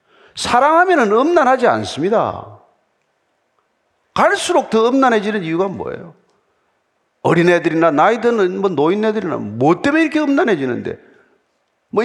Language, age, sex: Korean, 40-59, male